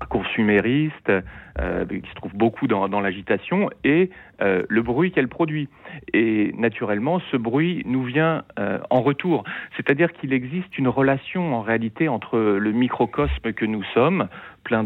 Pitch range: 105-145 Hz